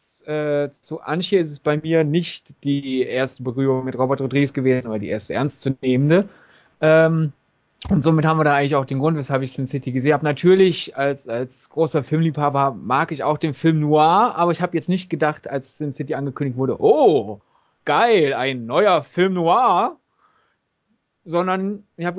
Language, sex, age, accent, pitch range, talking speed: German, male, 30-49, German, 140-180 Hz, 180 wpm